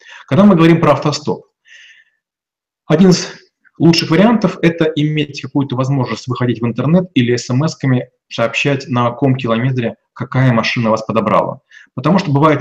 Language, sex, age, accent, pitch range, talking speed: Russian, male, 30-49, native, 120-150 Hz, 145 wpm